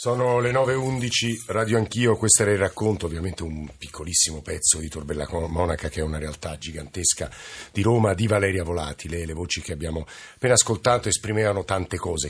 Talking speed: 170 wpm